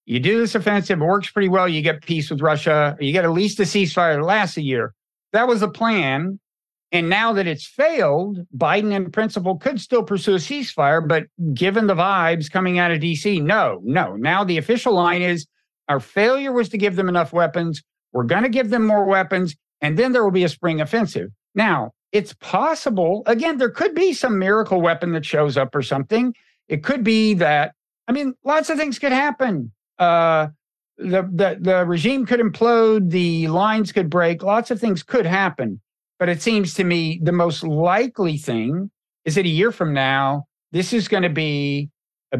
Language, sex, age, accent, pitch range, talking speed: English, male, 50-69, American, 155-210 Hz, 195 wpm